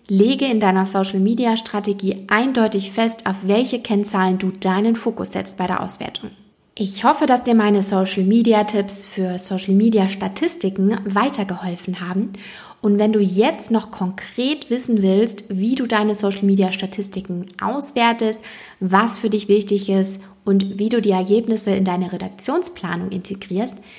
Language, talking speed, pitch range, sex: German, 150 wpm, 190-225 Hz, female